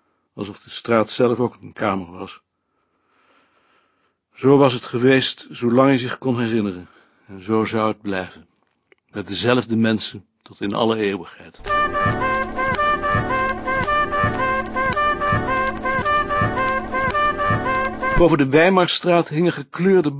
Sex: male